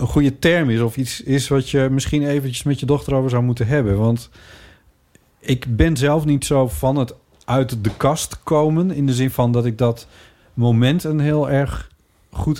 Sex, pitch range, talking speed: male, 95-130 Hz, 200 wpm